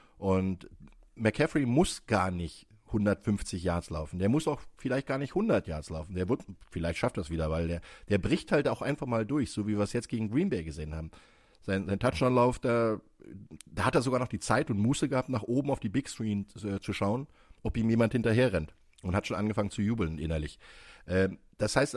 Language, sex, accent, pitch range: German, male, German, 100-130 Hz